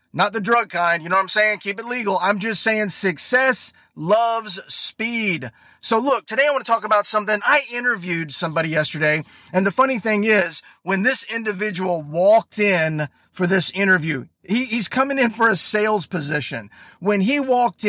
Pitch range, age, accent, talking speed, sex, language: 170-225 Hz, 30-49, American, 185 wpm, male, English